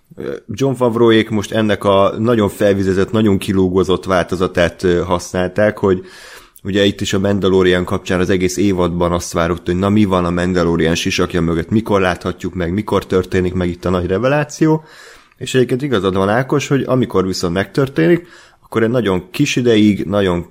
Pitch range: 90-110 Hz